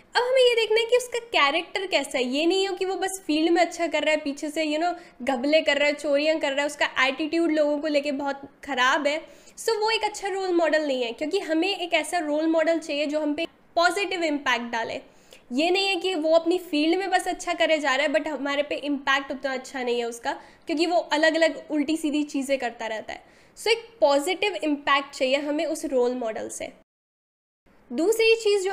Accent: native